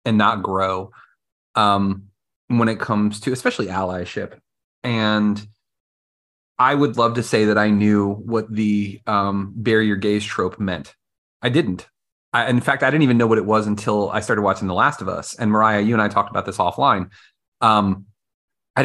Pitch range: 105-130 Hz